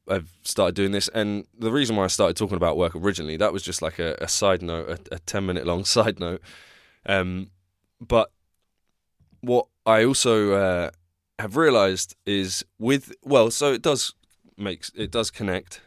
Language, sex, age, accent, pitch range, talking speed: English, male, 20-39, British, 90-110 Hz, 180 wpm